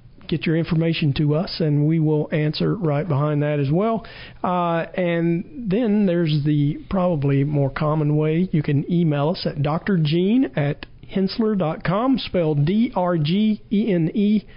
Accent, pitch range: American, 150-180 Hz